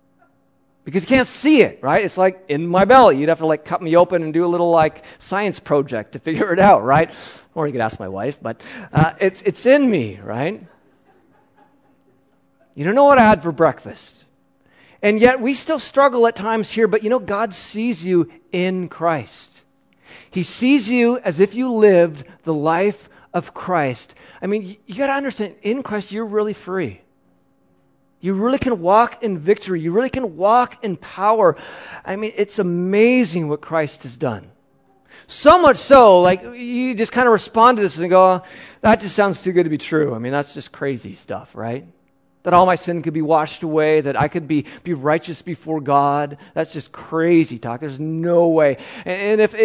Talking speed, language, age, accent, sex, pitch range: 195 wpm, English, 40-59, American, male, 155-220 Hz